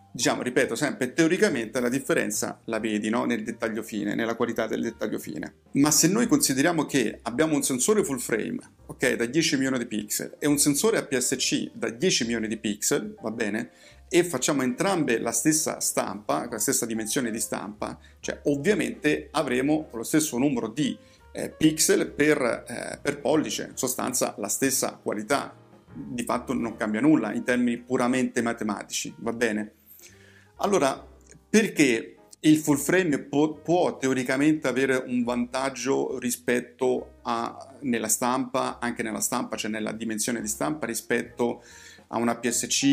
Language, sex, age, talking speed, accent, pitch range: Italian, male, 40-59, 155 wpm, native, 115-150 Hz